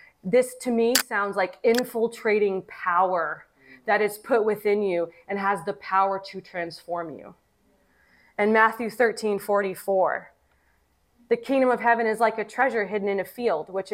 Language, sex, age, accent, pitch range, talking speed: English, female, 20-39, American, 195-245 Hz, 150 wpm